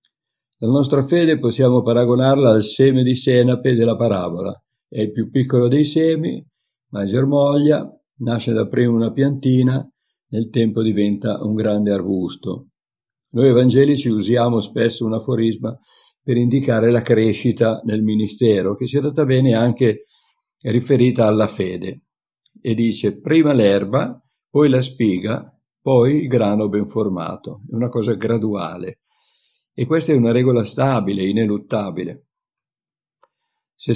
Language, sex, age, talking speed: Italian, male, 60-79, 130 wpm